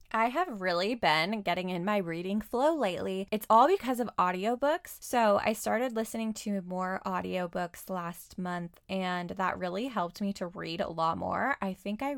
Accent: American